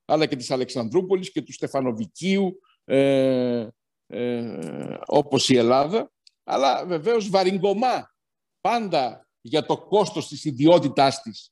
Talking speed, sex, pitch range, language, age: 115 wpm, male, 130-175 Hz, Greek, 60-79